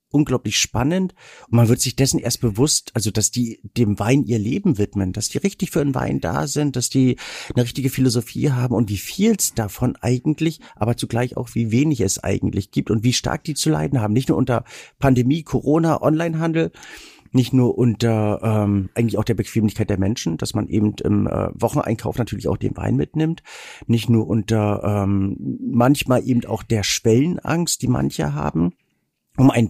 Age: 50-69